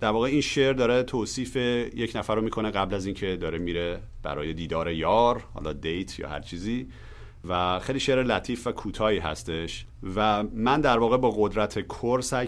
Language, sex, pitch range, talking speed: Persian, male, 85-110 Hz, 180 wpm